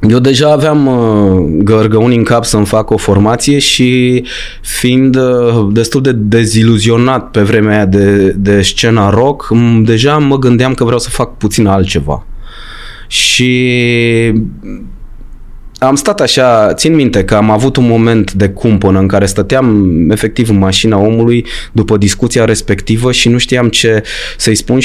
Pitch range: 105-130 Hz